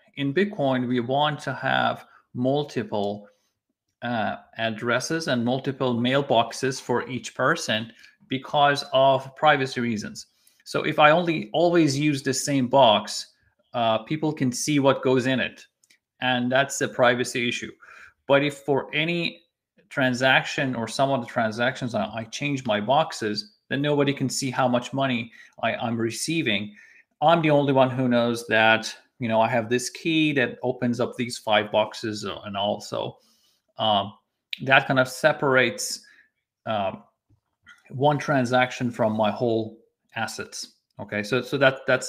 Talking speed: 145 wpm